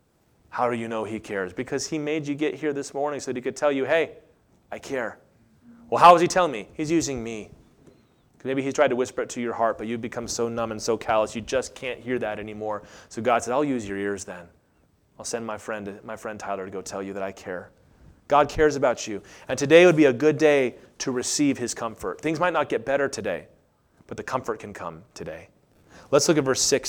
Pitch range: 115-175 Hz